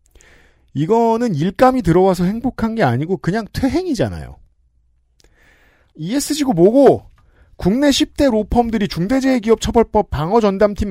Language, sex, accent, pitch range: Korean, male, native, 130-220 Hz